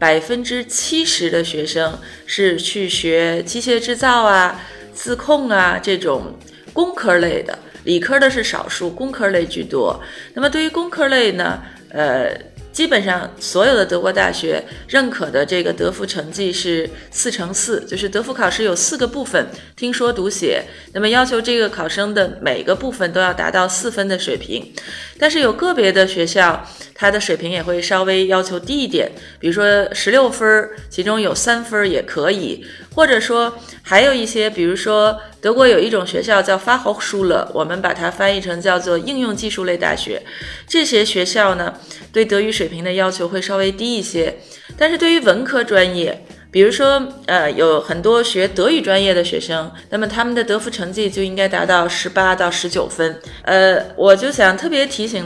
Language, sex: Chinese, female